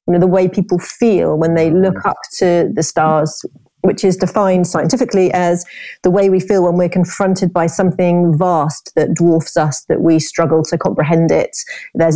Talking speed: 190 wpm